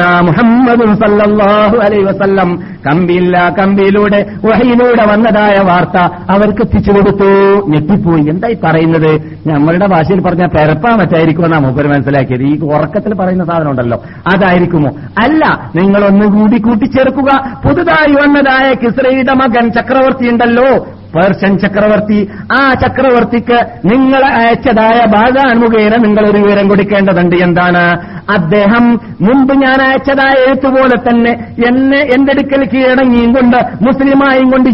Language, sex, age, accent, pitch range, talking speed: Malayalam, male, 50-69, native, 180-235 Hz, 90 wpm